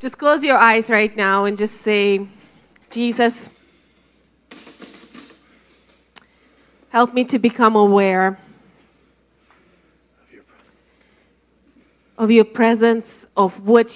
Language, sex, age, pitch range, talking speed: English, female, 30-49, 200-230 Hz, 85 wpm